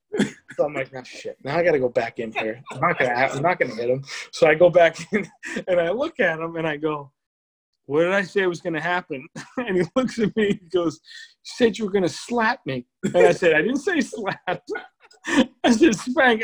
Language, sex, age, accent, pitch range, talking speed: English, male, 20-39, American, 155-240 Hz, 235 wpm